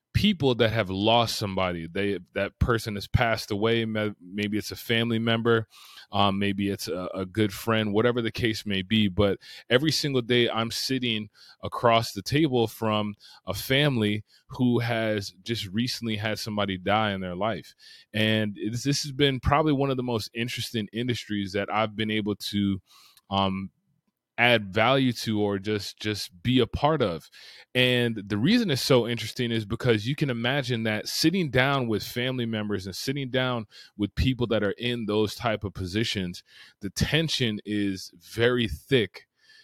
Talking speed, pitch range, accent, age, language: 170 wpm, 105-120 Hz, American, 20-39, English